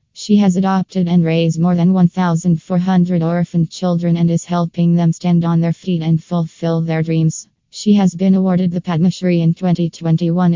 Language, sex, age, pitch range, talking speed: English, female, 20-39, 160-175 Hz, 175 wpm